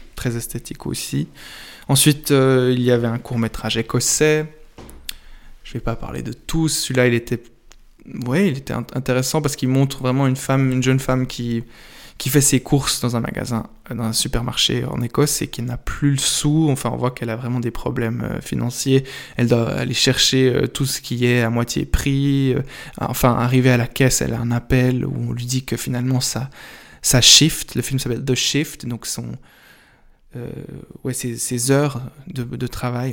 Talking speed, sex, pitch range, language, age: 190 wpm, male, 120-135 Hz, French, 20-39